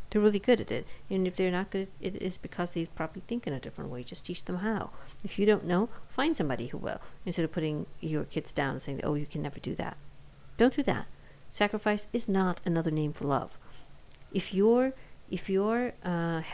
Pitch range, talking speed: 150-190 Hz, 220 wpm